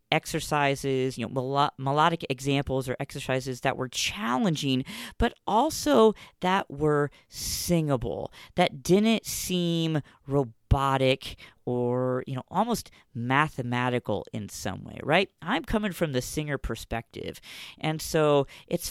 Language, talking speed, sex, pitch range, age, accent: English, 120 wpm, female, 125-170 Hz, 40-59, American